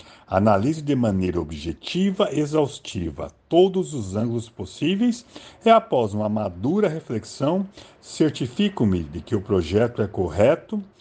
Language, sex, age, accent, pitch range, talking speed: Portuguese, male, 60-79, Brazilian, 110-160 Hz, 115 wpm